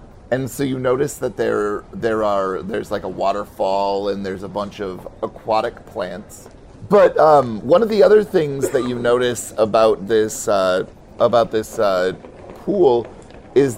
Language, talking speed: English, 160 wpm